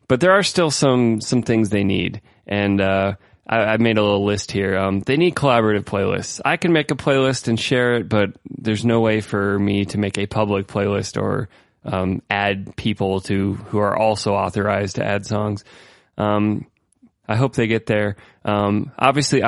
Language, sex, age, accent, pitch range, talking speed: English, male, 20-39, American, 100-120 Hz, 190 wpm